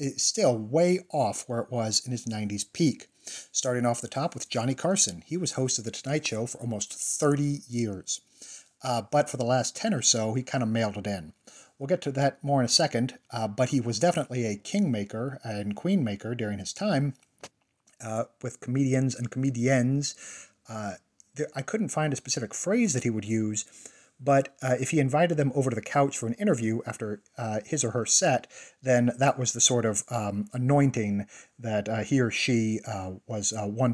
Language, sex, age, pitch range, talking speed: English, male, 40-59, 110-140 Hz, 200 wpm